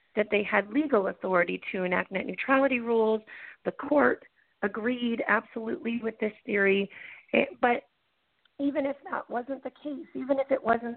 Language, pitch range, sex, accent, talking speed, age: English, 190-250 Hz, female, American, 160 wpm, 30-49